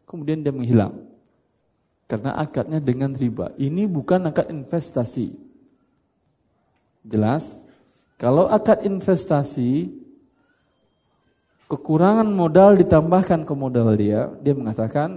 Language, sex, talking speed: Indonesian, male, 90 wpm